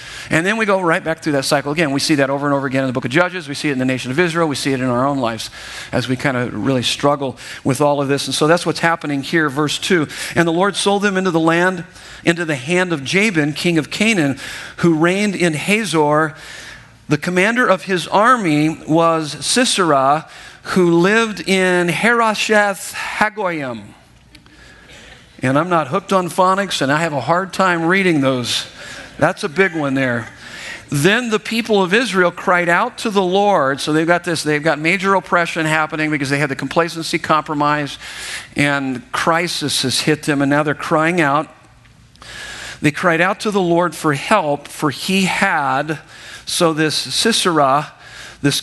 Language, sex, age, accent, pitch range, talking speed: English, male, 50-69, American, 145-180 Hz, 190 wpm